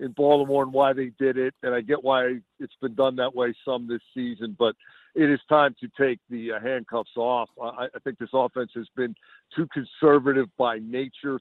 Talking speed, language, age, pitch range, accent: 200 wpm, English, 50-69, 125-145 Hz, American